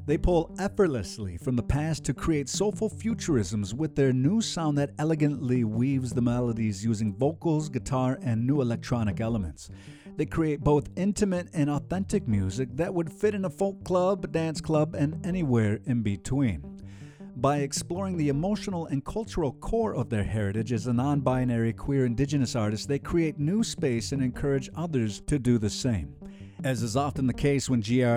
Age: 50-69